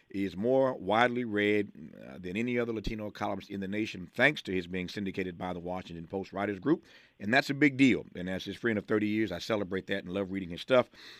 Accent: American